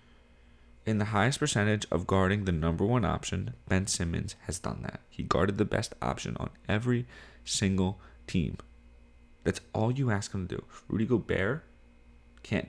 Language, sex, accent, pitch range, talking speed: English, male, American, 65-105 Hz, 160 wpm